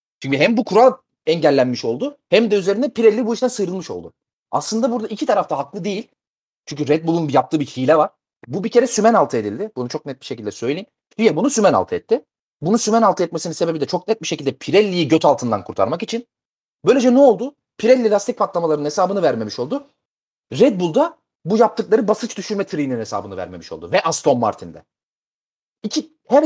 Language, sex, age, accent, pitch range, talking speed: Turkish, male, 30-49, native, 160-245 Hz, 185 wpm